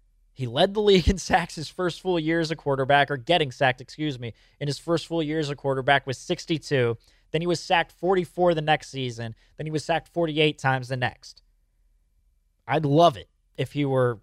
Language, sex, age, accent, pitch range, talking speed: English, male, 20-39, American, 130-170 Hz, 210 wpm